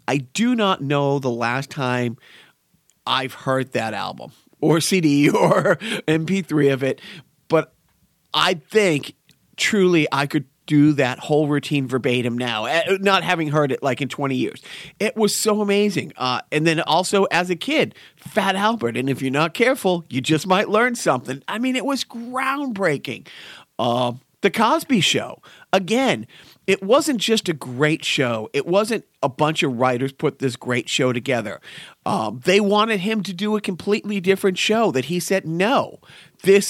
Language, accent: English, American